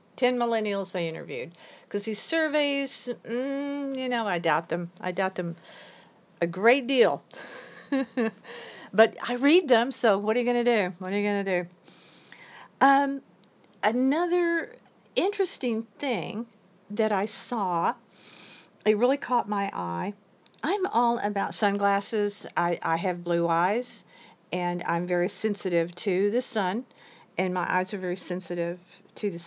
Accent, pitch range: American, 185-240 Hz